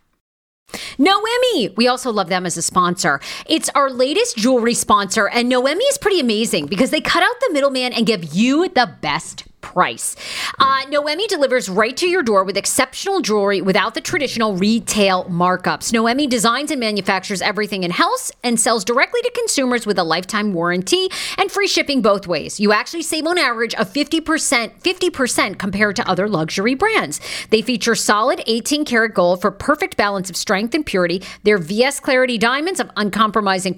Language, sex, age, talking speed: English, female, 40-59, 170 wpm